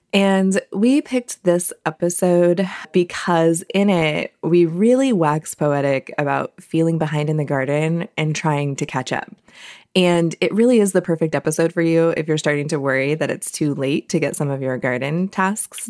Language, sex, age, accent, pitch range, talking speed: English, female, 20-39, American, 145-180 Hz, 180 wpm